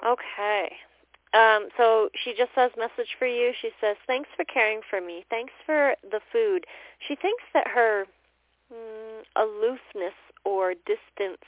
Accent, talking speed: American, 145 wpm